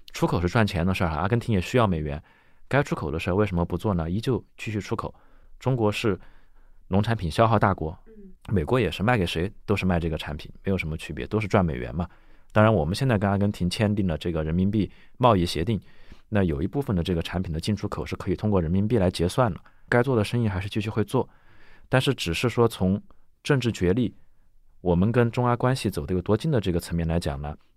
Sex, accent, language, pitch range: male, native, Chinese, 85-115 Hz